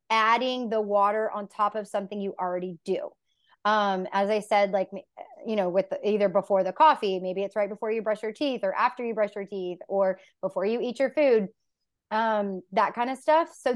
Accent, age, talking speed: American, 20-39, 210 wpm